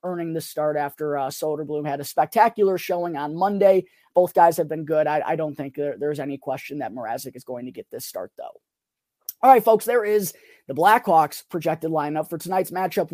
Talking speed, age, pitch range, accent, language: 205 wpm, 20-39, 165-205 Hz, American, English